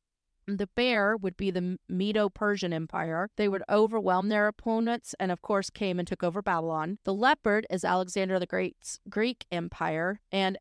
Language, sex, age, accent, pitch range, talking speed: English, female, 40-59, American, 180-225 Hz, 165 wpm